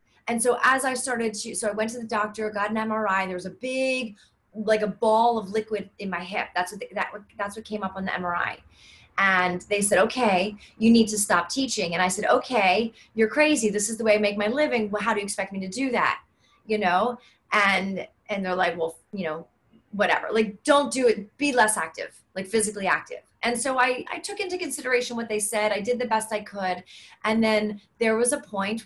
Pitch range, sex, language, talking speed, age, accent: 205-245 Hz, female, English, 235 wpm, 30-49, American